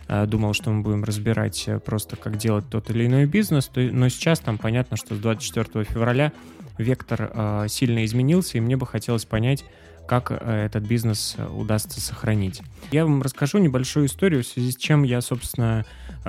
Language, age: Russian, 20-39